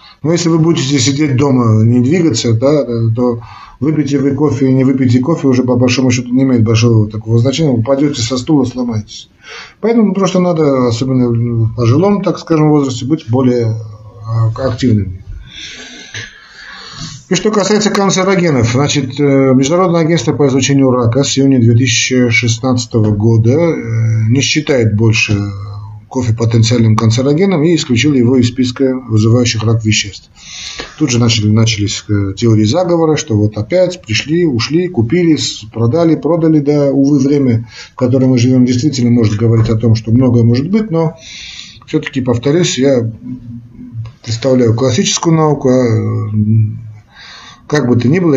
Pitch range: 115-145 Hz